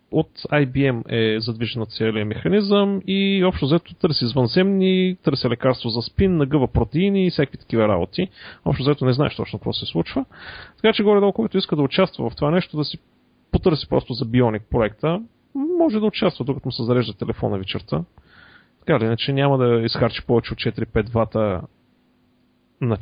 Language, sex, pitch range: Bulgarian, male, 115-160 Hz